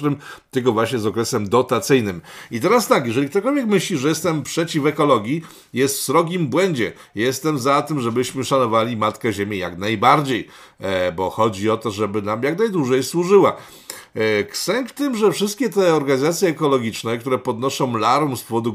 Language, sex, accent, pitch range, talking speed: Polish, male, native, 110-145 Hz, 155 wpm